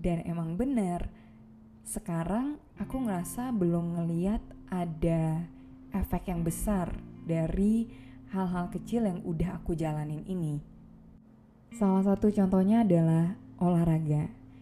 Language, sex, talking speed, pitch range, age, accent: Indonesian, female, 105 wpm, 160-195 Hz, 20-39, native